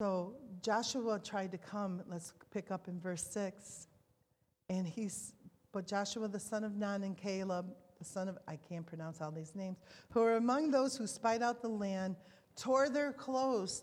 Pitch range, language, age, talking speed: 185-225 Hz, English, 40-59, 180 wpm